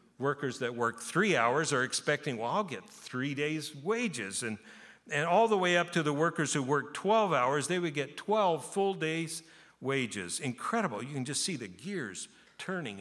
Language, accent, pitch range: English, American, 110-160 Hz